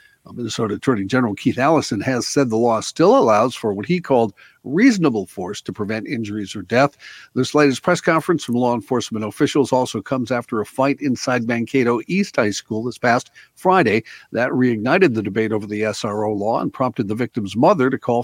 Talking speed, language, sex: 190 wpm, English, male